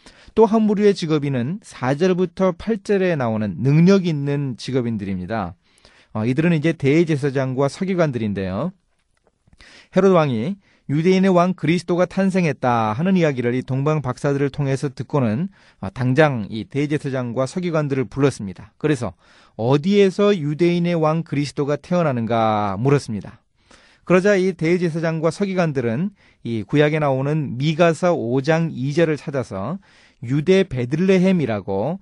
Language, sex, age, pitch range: Korean, male, 40-59, 115-170 Hz